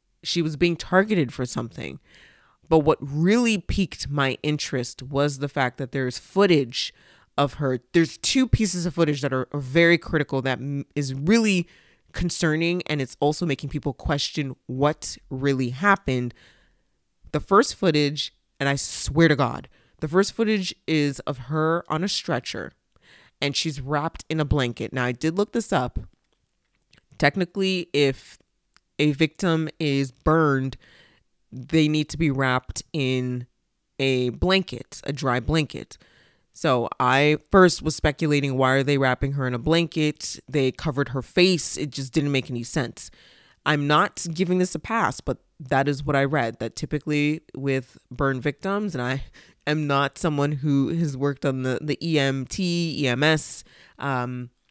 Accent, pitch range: American, 135-160 Hz